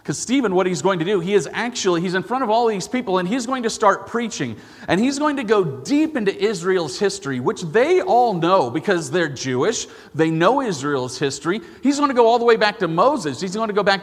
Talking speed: 250 wpm